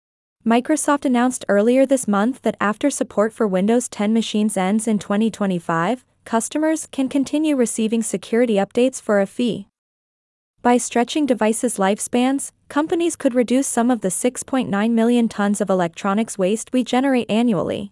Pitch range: 205-255 Hz